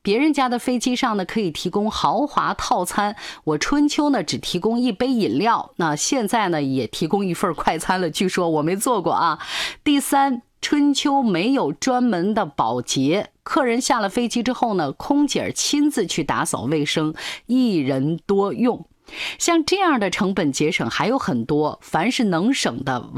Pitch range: 170-250 Hz